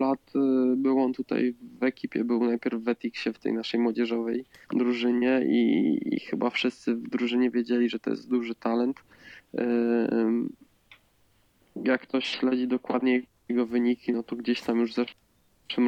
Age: 20-39